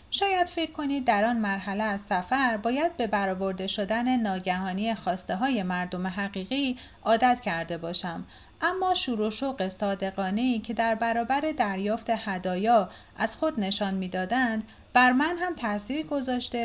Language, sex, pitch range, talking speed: Persian, female, 190-260 Hz, 140 wpm